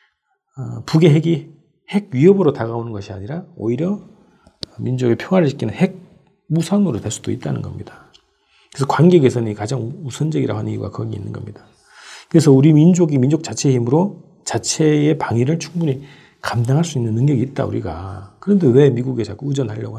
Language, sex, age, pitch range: Korean, male, 40-59, 115-165 Hz